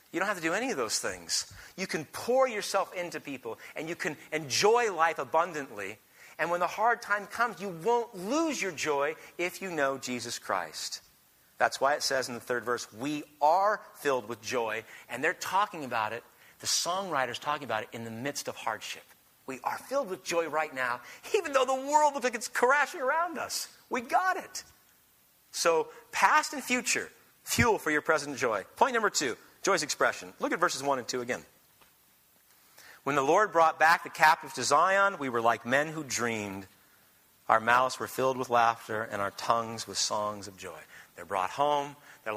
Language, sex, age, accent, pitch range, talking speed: English, male, 40-59, American, 125-175 Hz, 195 wpm